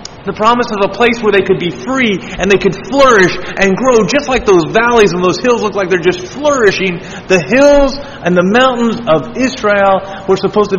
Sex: male